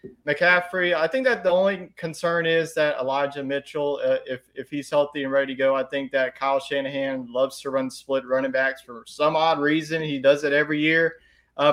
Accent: American